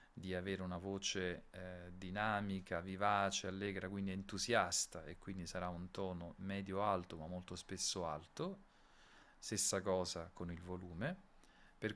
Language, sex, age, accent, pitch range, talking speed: Italian, male, 40-59, native, 90-100 Hz, 130 wpm